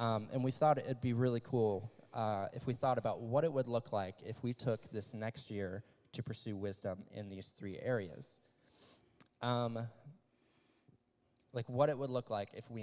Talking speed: 190 wpm